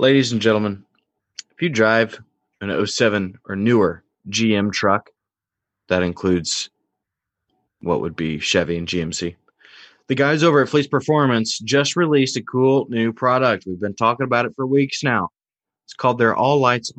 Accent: American